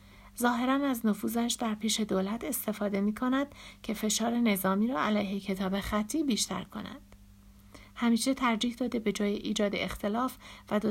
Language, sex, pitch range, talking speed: Persian, female, 190-240 Hz, 150 wpm